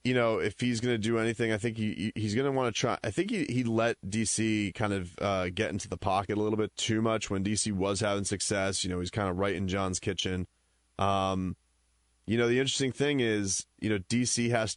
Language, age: English, 30-49